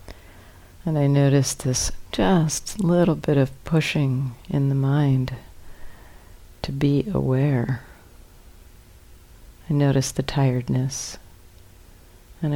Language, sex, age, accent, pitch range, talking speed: English, female, 50-69, American, 95-150 Hz, 95 wpm